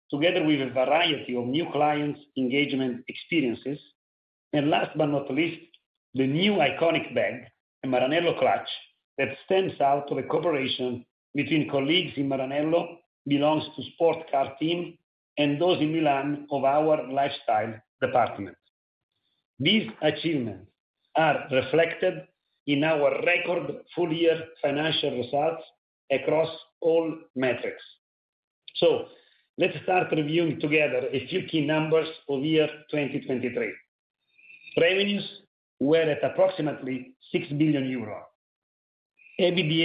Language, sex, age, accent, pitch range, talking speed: English, male, 40-59, Italian, 140-170 Hz, 115 wpm